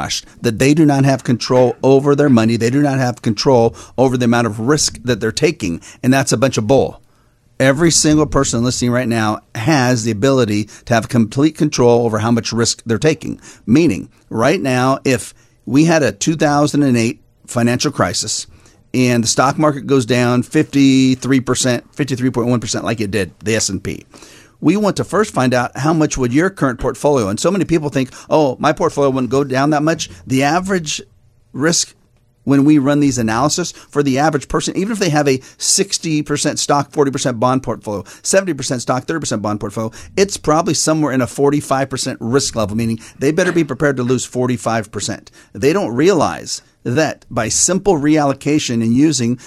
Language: English